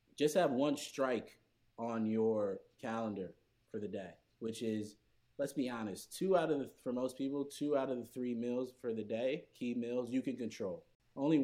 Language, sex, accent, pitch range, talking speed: English, male, American, 110-130 Hz, 195 wpm